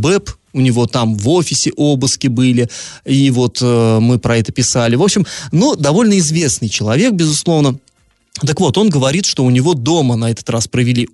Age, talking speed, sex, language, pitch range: 20-39, 185 wpm, male, Russian, 120-155 Hz